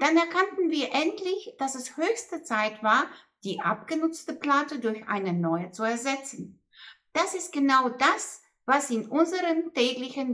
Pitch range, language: 205-305 Hz, German